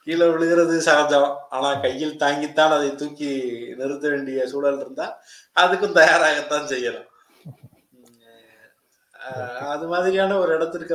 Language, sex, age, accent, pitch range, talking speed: Tamil, male, 20-39, native, 115-145 Hz, 105 wpm